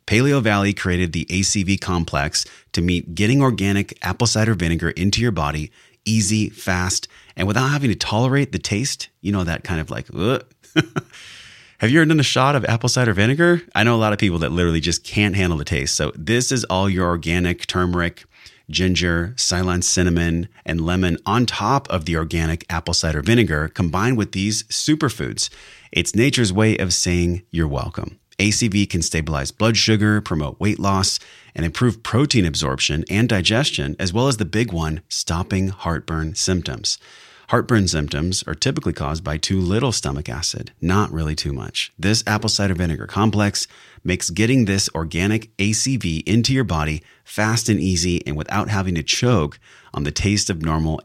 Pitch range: 85-110 Hz